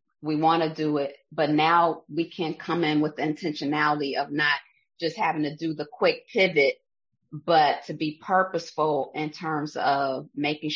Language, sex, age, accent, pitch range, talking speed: English, female, 30-49, American, 145-160 Hz, 175 wpm